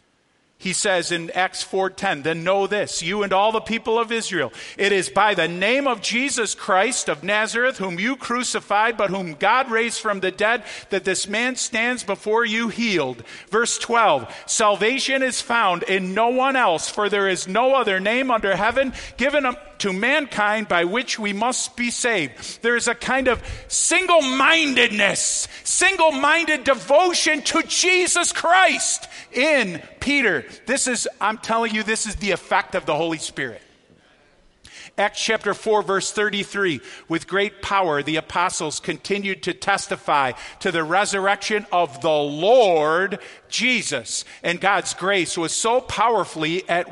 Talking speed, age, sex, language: 155 wpm, 50-69, male, English